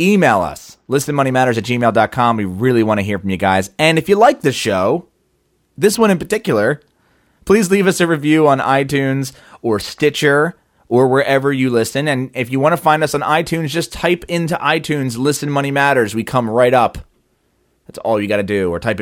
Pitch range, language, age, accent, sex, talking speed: 110-155 Hz, English, 30-49, American, male, 200 wpm